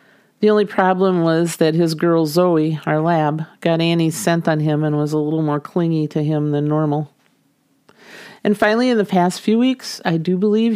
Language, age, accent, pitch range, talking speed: English, 40-59, American, 155-185 Hz, 195 wpm